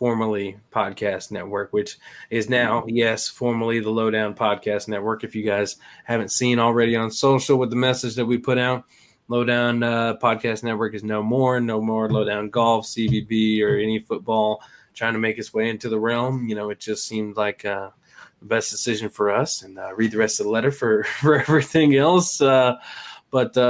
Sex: male